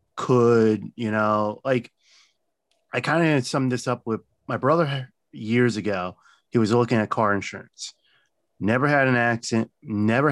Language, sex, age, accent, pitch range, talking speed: English, male, 30-49, American, 105-125 Hz, 150 wpm